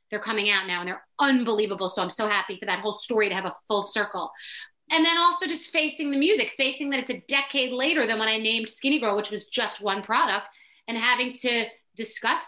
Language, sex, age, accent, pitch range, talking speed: English, female, 30-49, American, 205-255 Hz, 230 wpm